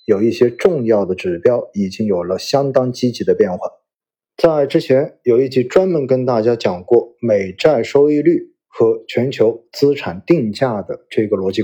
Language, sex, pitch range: Chinese, male, 115-180 Hz